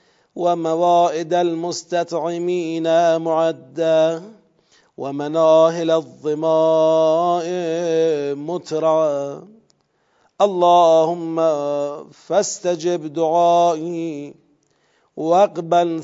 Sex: male